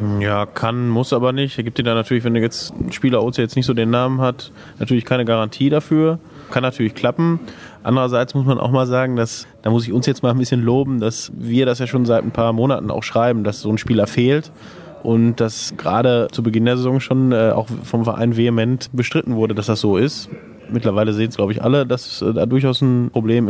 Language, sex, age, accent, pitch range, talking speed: German, male, 20-39, German, 115-130 Hz, 225 wpm